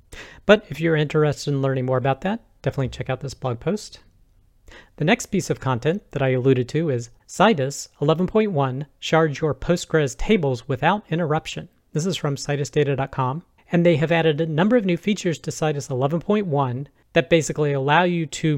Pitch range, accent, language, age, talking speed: 130-160 Hz, American, English, 40-59, 175 wpm